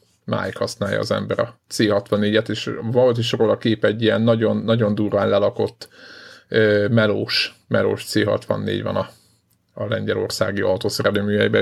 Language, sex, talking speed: Hungarian, male, 130 wpm